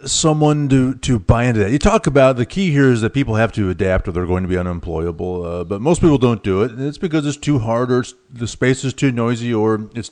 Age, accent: 40-59, American